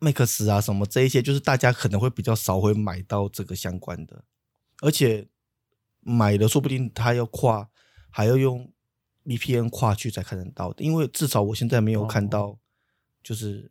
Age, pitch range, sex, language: 20-39, 105-130 Hz, male, Chinese